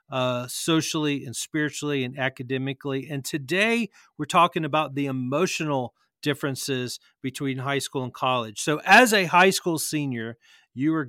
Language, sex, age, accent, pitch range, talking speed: English, male, 40-59, American, 135-160 Hz, 145 wpm